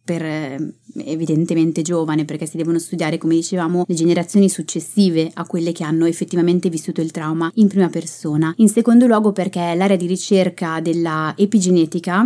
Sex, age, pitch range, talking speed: female, 20-39, 165-195 Hz, 155 wpm